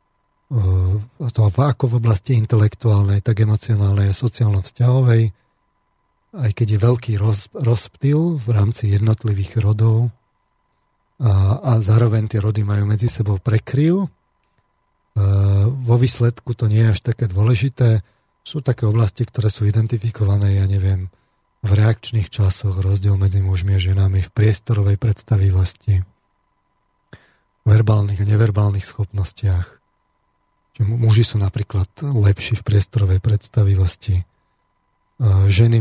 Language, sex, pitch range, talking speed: Slovak, male, 100-115 Hz, 115 wpm